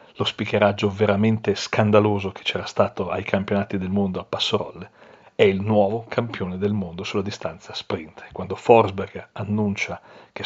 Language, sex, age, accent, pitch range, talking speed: Italian, male, 40-59, native, 100-115 Hz, 150 wpm